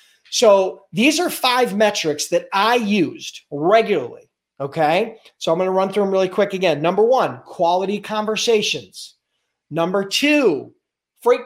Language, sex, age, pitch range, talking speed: English, male, 40-59, 165-220 Hz, 135 wpm